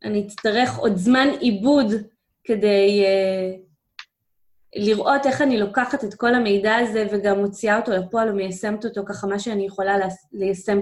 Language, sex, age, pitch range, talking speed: Hebrew, female, 20-39, 195-240 Hz, 145 wpm